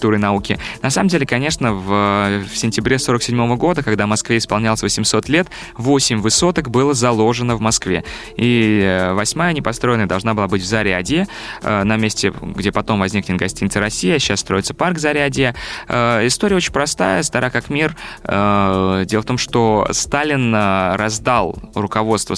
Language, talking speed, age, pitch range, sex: Russian, 145 wpm, 20-39, 100-130 Hz, male